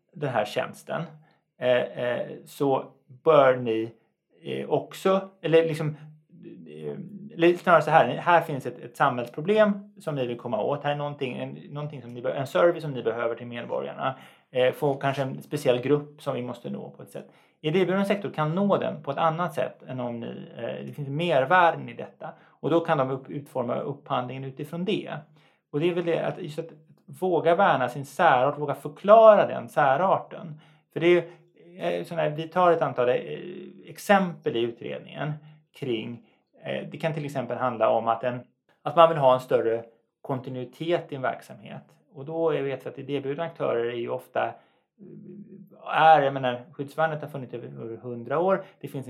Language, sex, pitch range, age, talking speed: Swedish, male, 125-170 Hz, 30-49, 180 wpm